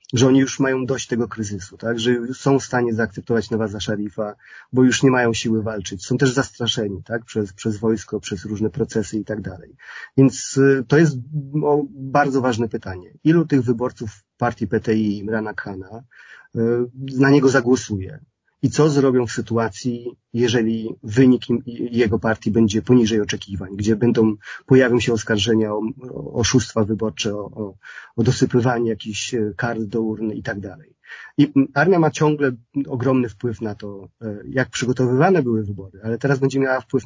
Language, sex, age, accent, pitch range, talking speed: Polish, male, 30-49, native, 110-130 Hz, 165 wpm